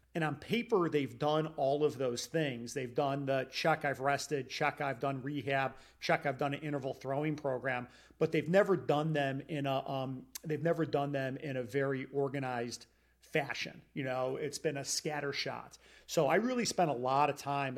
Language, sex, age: English, male, 40-59